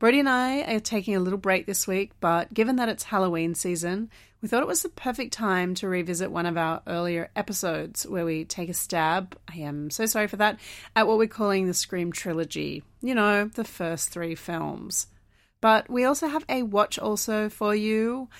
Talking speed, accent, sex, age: 205 wpm, Australian, female, 30-49